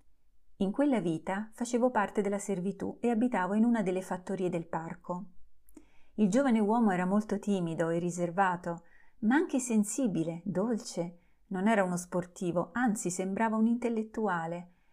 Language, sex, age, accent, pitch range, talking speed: Italian, female, 30-49, native, 175-215 Hz, 140 wpm